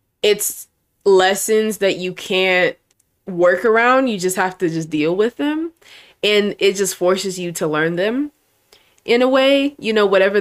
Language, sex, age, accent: English, female, 20-39, American